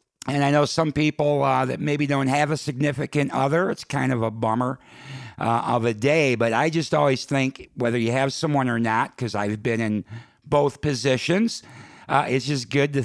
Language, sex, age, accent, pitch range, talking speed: English, male, 50-69, American, 115-145 Hz, 200 wpm